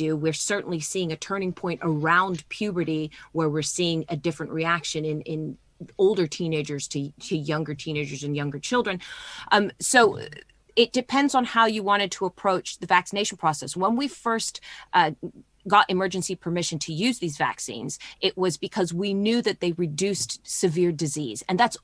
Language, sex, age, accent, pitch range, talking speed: English, female, 30-49, American, 160-195 Hz, 165 wpm